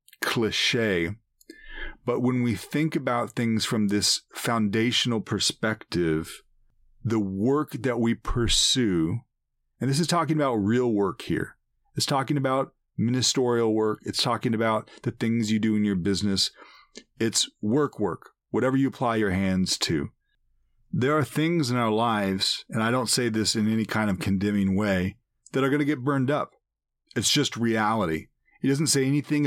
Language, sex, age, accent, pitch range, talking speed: English, male, 40-59, American, 105-130 Hz, 160 wpm